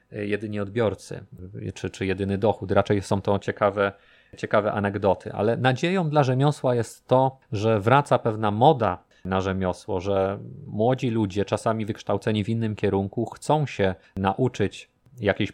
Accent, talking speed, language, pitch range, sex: native, 140 wpm, Polish, 100-120 Hz, male